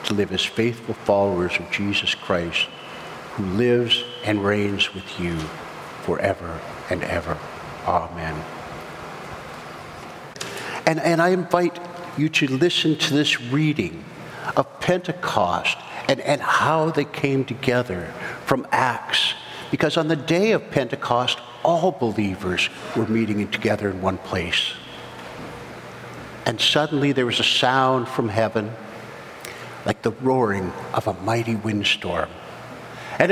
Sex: male